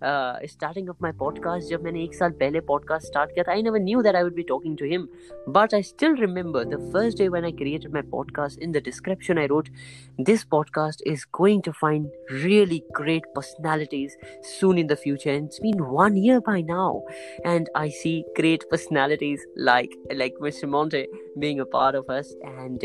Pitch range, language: 135-170 Hz, Hindi